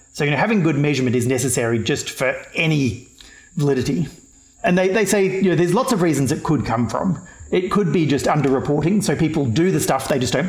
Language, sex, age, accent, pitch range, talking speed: English, male, 40-59, Australian, 130-185 Hz, 225 wpm